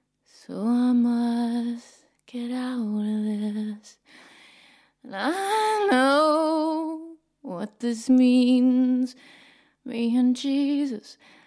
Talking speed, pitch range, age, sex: 85 wpm, 245-290 Hz, 20-39, female